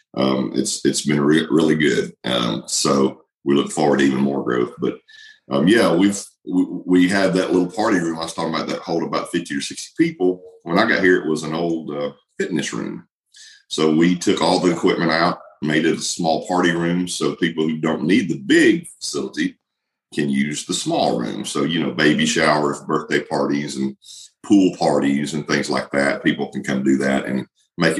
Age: 40-59